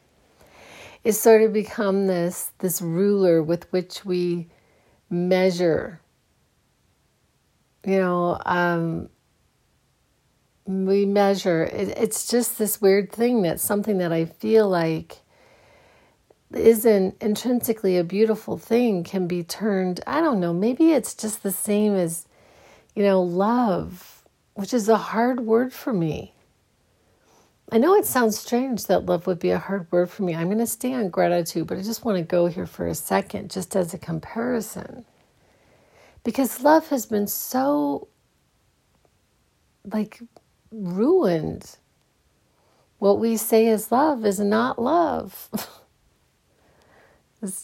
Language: English